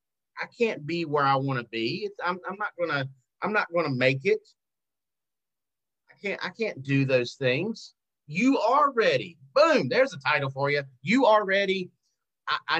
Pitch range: 135-205 Hz